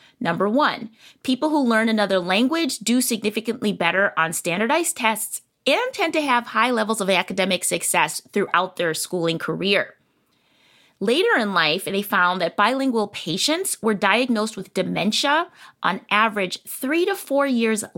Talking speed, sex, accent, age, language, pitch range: 145 wpm, female, American, 20-39, English, 185-250 Hz